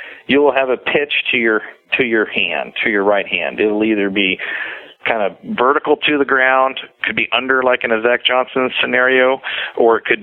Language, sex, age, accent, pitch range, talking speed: English, male, 40-59, American, 110-130 Hz, 195 wpm